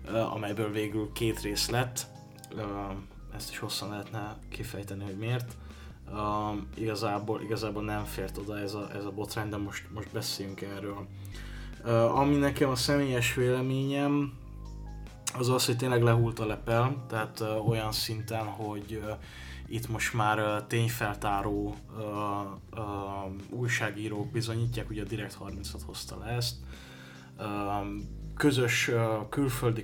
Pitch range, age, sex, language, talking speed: 100-120 Hz, 20-39, male, Hungarian, 135 wpm